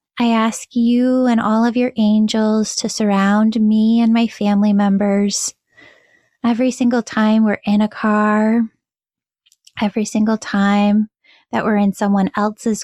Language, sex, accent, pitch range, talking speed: English, female, American, 205-230 Hz, 140 wpm